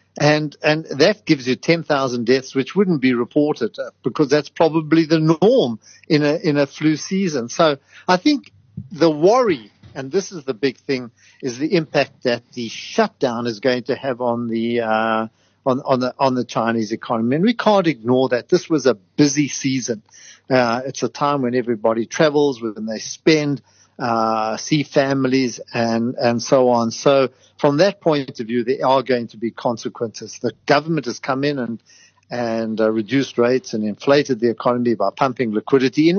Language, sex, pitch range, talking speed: English, male, 120-155 Hz, 180 wpm